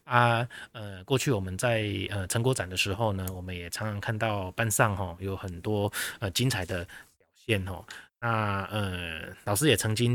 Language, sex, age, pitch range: Chinese, male, 20-39, 95-115 Hz